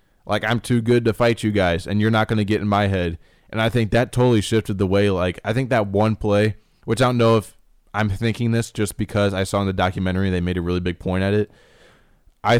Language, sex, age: English, male, 20-39